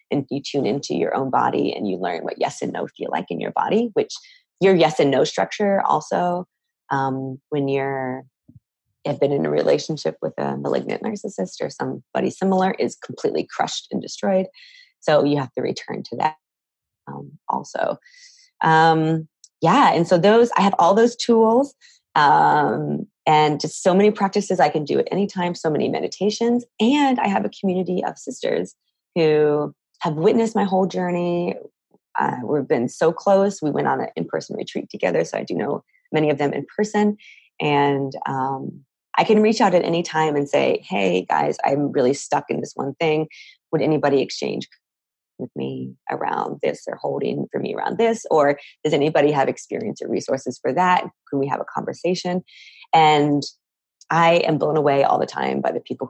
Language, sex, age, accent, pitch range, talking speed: English, female, 20-39, American, 150-215 Hz, 185 wpm